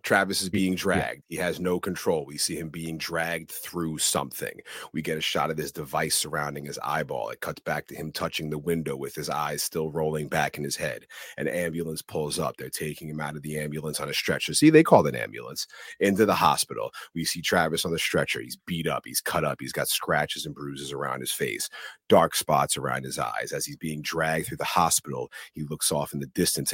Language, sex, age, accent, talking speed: English, male, 30-49, American, 230 wpm